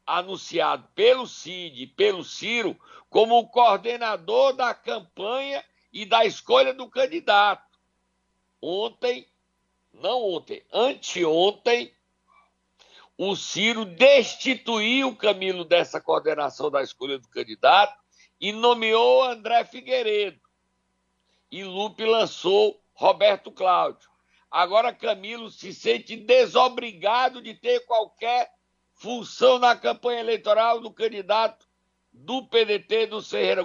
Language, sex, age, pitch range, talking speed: Portuguese, male, 60-79, 185-255 Hz, 100 wpm